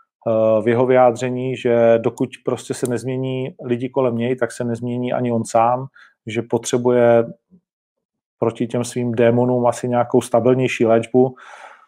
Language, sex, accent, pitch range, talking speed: Czech, male, native, 115-130 Hz, 135 wpm